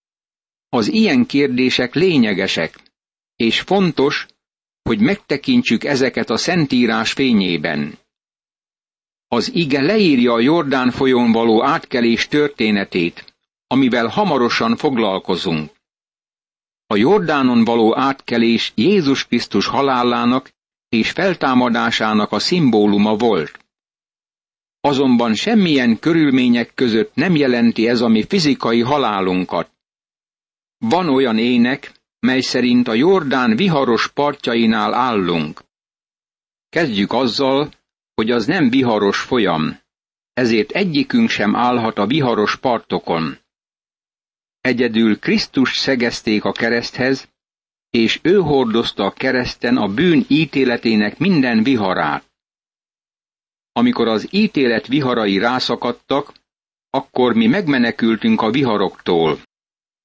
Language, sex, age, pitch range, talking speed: Hungarian, male, 60-79, 115-140 Hz, 95 wpm